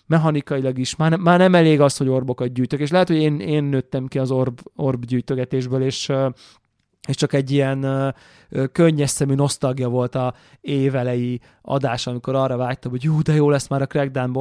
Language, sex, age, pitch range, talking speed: Hungarian, male, 20-39, 125-150 Hz, 180 wpm